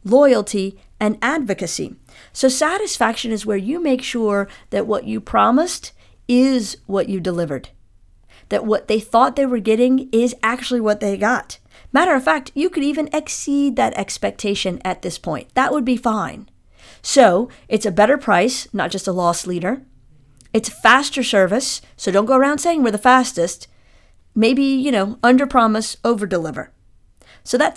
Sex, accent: female, American